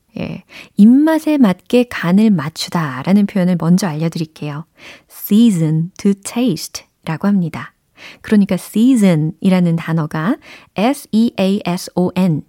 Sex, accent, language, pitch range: female, native, Korean, 165-225 Hz